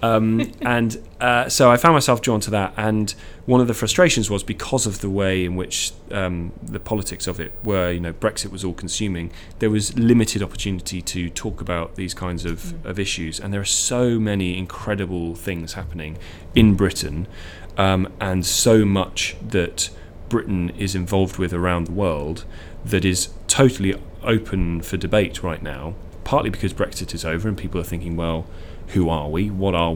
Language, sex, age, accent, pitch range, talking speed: English, male, 30-49, British, 85-105 Hz, 180 wpm